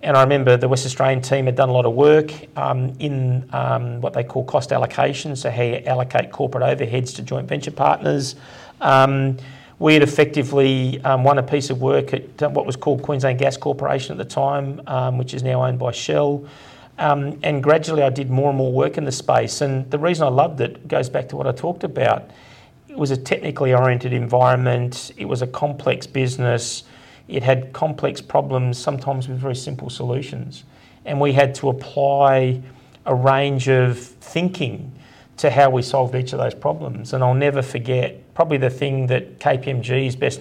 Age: 40-59